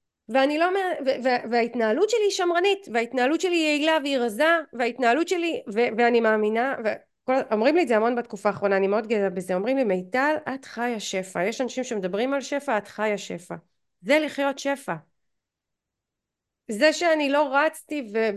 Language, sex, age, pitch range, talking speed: Hebrew, female, 30-49, 225-320 Hz, 145 wpm